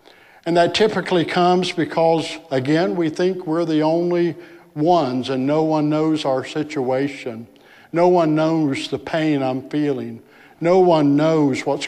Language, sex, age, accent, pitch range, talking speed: English, male, 60-79, American, 135-155 Hz, 145 wpm